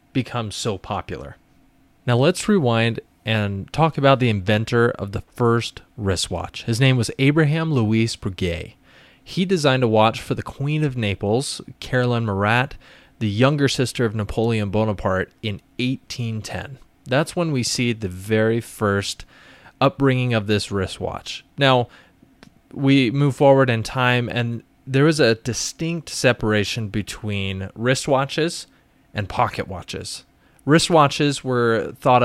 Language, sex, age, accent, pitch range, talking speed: English, male, 20-39, American, 105-130 Hz, 135 wpm